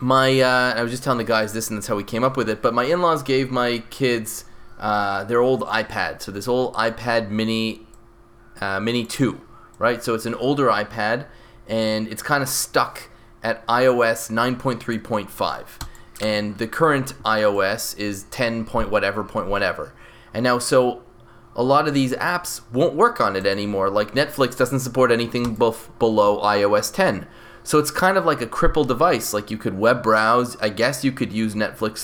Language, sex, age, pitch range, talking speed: English, male, 20-39, 110-125 Hz, 185 wpm